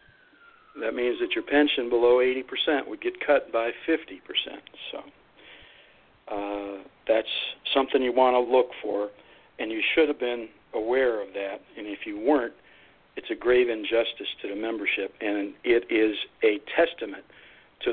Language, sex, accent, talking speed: English, male, American, 155 wpm